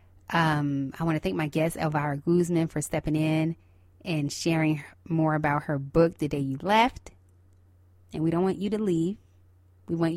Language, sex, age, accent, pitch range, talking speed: English, female, 20-39, American, 140-185 Hz, 185 wpm